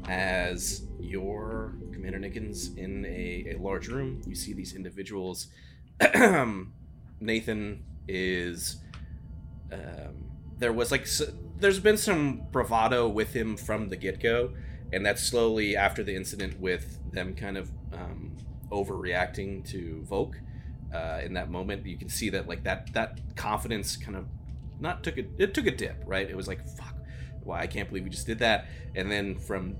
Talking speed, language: 165 wpm, English